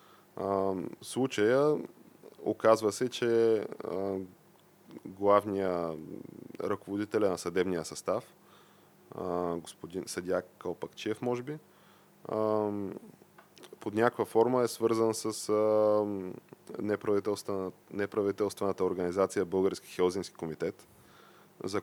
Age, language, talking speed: 20-39, Bulgarian, 85 wpm